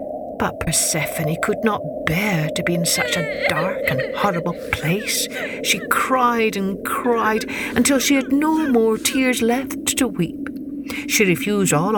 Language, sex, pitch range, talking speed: English, female, 175-265 Hz, 150 wpm